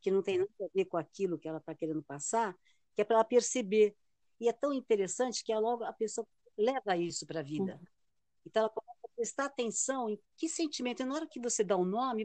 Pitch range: 185-250 Hz